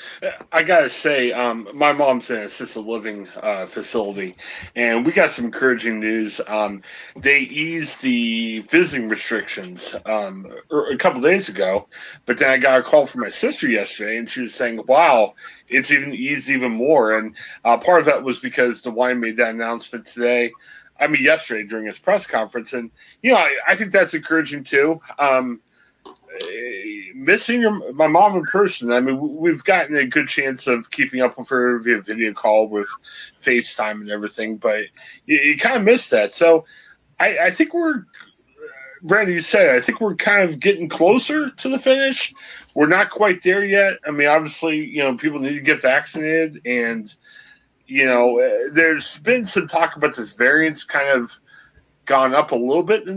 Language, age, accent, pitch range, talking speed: English, 30-49, American, 120-200 Hz, 185 wpm